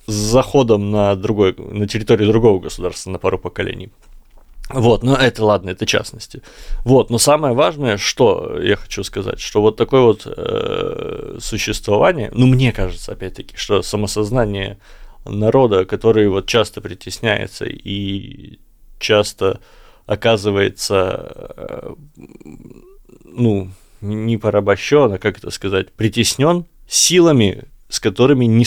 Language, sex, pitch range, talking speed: Russian, male, 100-120 Hz, 120 wpm